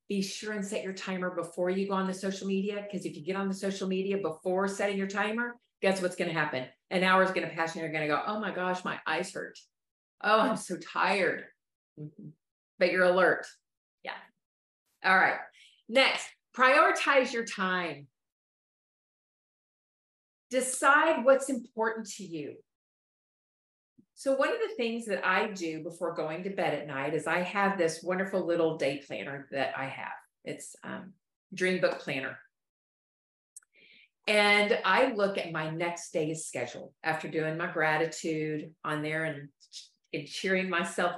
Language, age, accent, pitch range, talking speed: English, 40-59, American, 165-210 Hz, 165 wpm